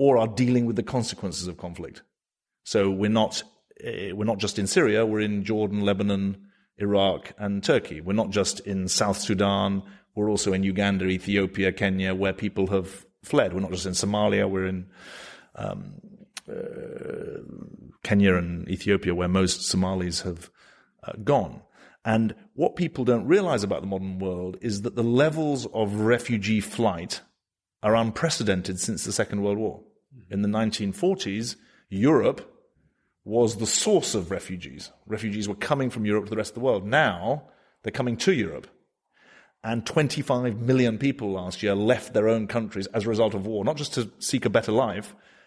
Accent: British